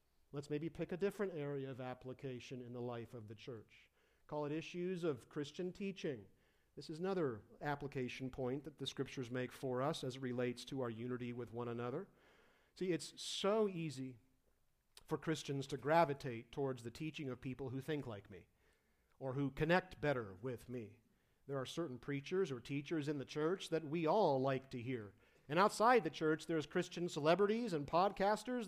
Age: 50-69